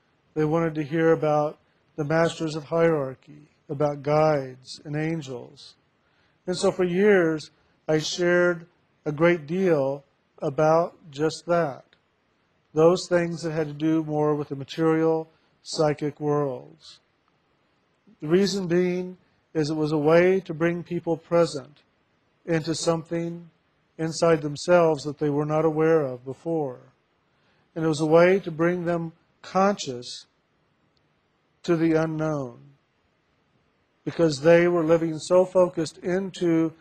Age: 50-69